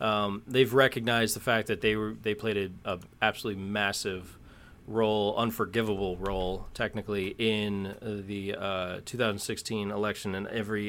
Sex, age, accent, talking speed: male, 30-49, American, 140 wpm